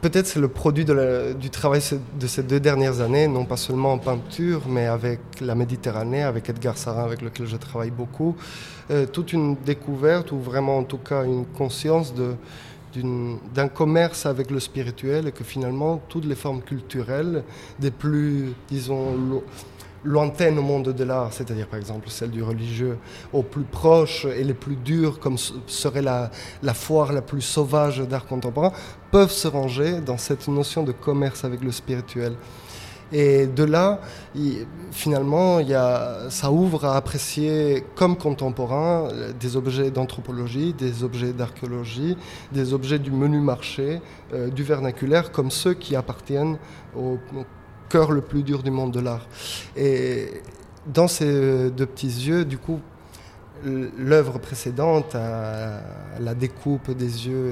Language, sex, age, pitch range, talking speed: French, male, 20-39, 125-145 Hz, 160 wpm